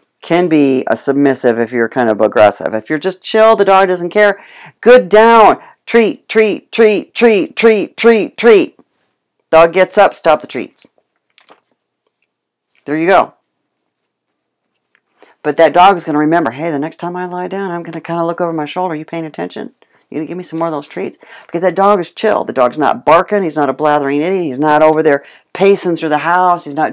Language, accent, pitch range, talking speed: English, American, 140-200 Hz, 205 wpm